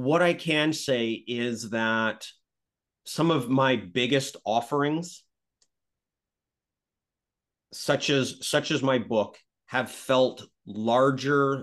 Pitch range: 110-135 Hz